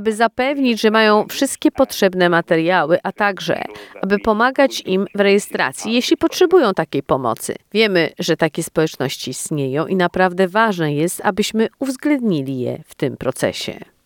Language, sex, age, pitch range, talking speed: Polish, female, 40-59, 175-230 Hz, 140 wpm